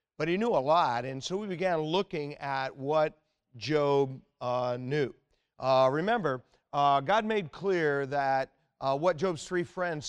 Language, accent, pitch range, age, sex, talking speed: English, American, 135-165 Hz, 50-69, male, 160 wpm